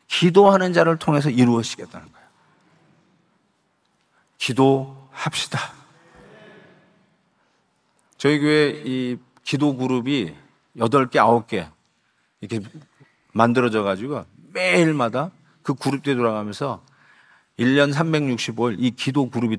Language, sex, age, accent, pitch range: Korean, male, 40-59, native, 120-170 Hz